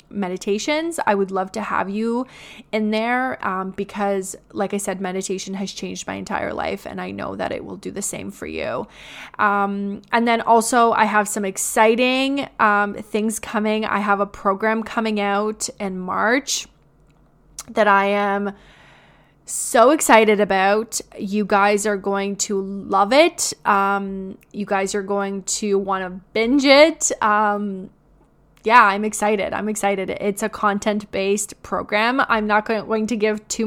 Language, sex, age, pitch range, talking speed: English, female, 20-39, 195-220 Hz, 160 wpm